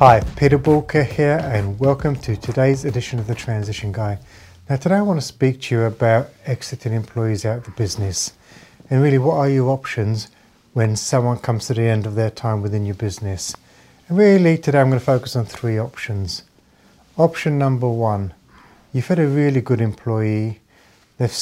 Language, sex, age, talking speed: English, male, 40-59, 185 wpm